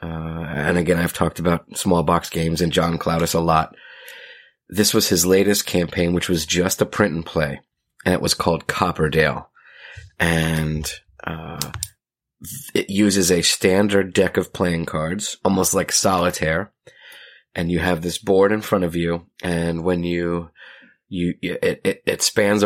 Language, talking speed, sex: English, 160 wpm, male